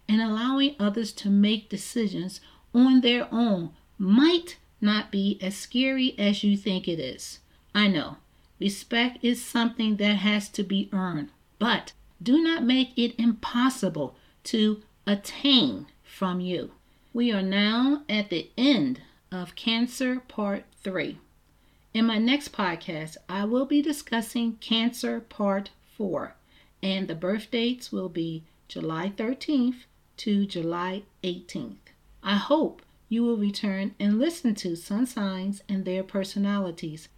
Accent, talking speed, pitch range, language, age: American, 135 wpm, 195-245 Hz, English, 40-59